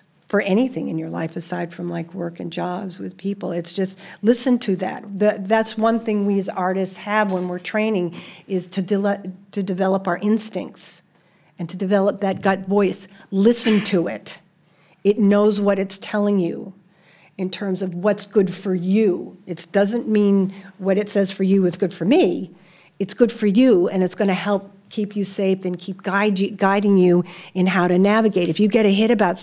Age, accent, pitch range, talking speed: 50-69, American, 175-200 Hz, 190 wpm